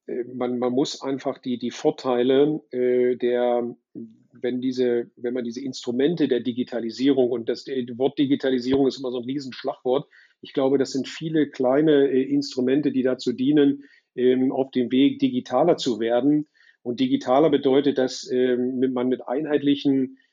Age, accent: 40-59, German